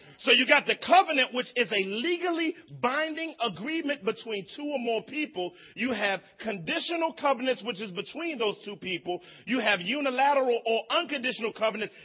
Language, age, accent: English, 40-59, American